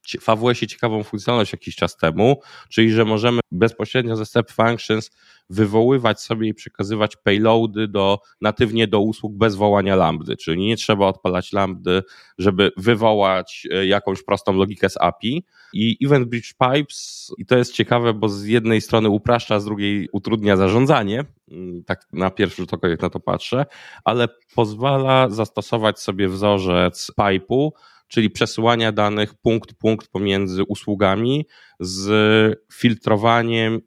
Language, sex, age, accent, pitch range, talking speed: Polish, male, 20-39, native, 95-115 Hz, 135 wpm